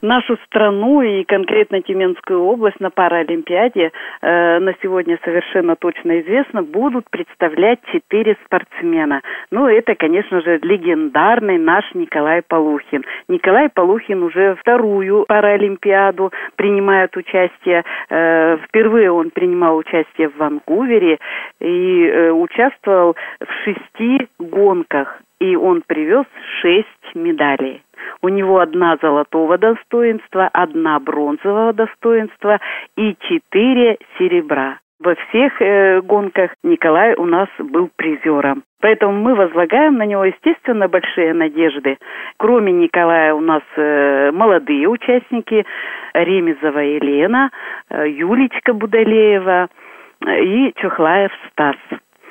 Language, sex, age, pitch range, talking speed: Russian, female, 40-59, 170-235 Hz, 105 wpm